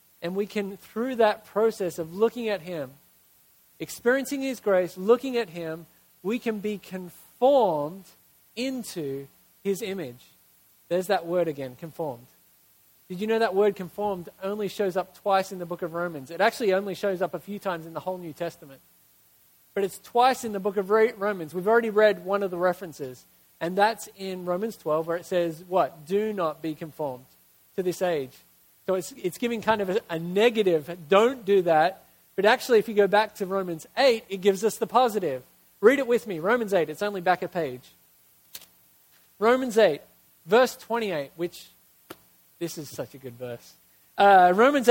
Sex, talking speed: male, 185 wpm